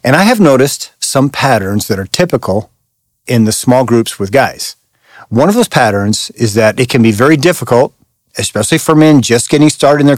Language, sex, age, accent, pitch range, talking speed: English, male, 50-69, American, 115-150 Hz, 200 wpm